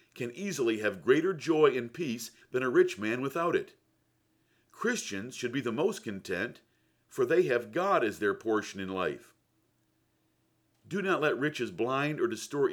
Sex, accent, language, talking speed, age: male, American, English, 165 wpm, 50-69